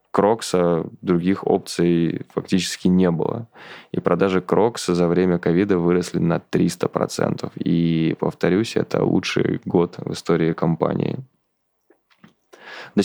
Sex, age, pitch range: male, 20-39, 85-90 Hz